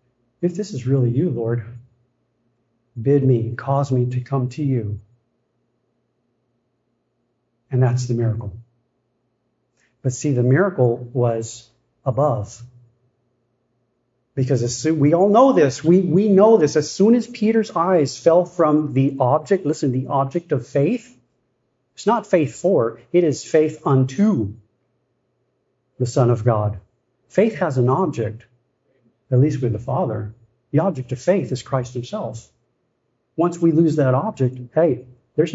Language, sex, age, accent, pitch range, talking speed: English, male, 50-69, American, 120-145 Hz, 140 wpm